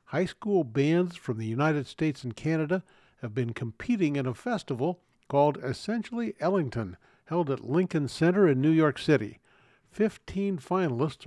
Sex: male